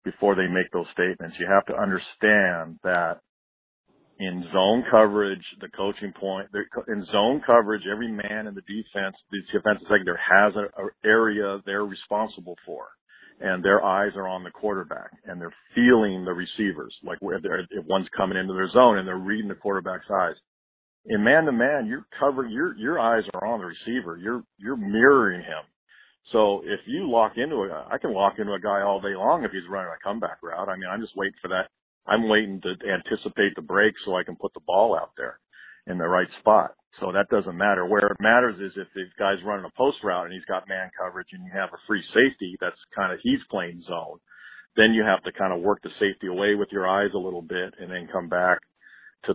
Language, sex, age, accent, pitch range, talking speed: English, male, 50-69, American, 90-105 Hz, 215 wpm